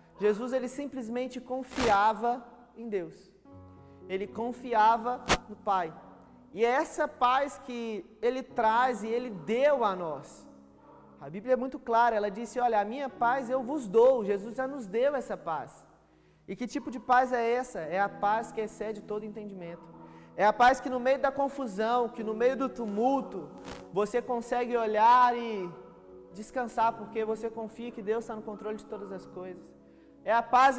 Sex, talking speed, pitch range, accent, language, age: male, 175 wpm, 210-255 Hz, Brazilian, Gujarati, 20-39